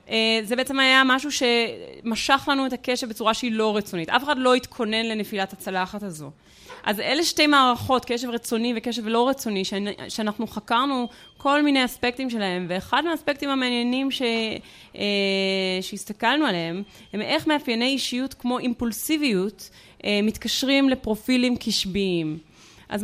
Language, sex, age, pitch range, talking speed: Hebrew, female, 20-39, 205-265 Hz, 130 wpm